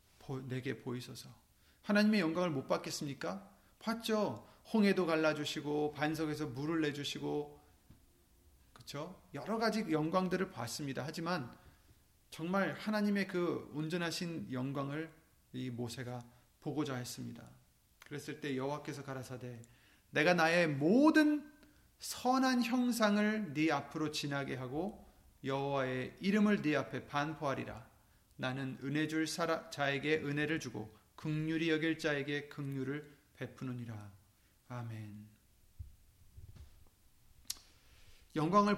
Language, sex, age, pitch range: Korean, male, 30-49, 130-180 Hz